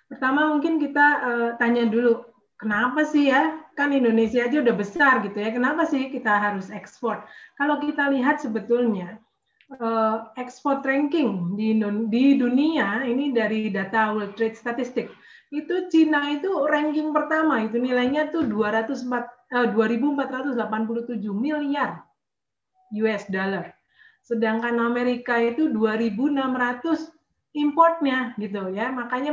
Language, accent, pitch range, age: Indonesian, native, 220-285 Hz, 30-49